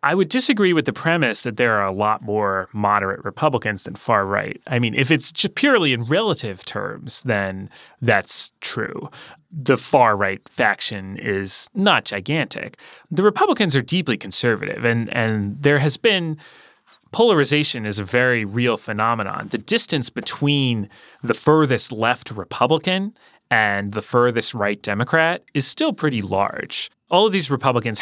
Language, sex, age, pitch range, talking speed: English, male, 30-49, 105-155 Hz, 150 wpm